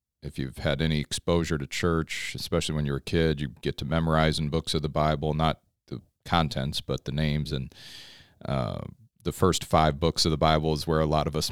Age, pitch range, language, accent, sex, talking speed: 40-59, 75-85 Hz, English, American, male, 225 wpm